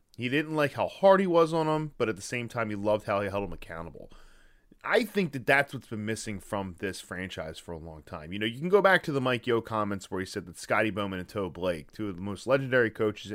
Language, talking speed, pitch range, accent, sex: English, 275 wpm, 105-140 Hz, American, male